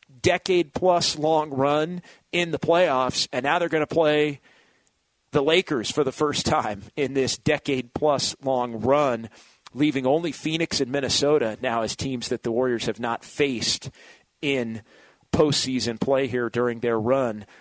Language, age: English, 40-59